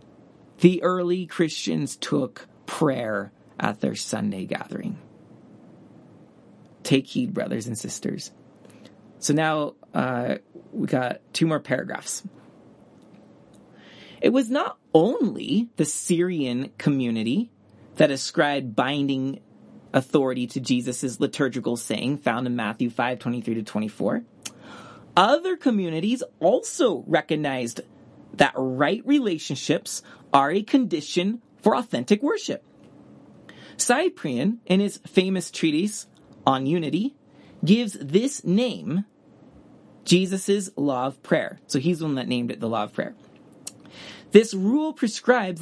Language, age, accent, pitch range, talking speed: English, 30-49, American, 145-230 Hz, 110 wpm